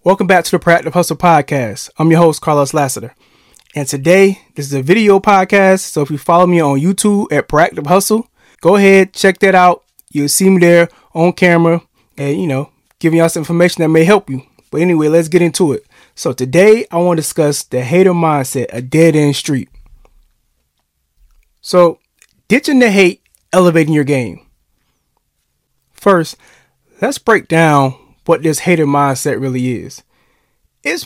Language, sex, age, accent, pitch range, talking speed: English, male, 20-39, American, 145-190 Hz, 170 wpm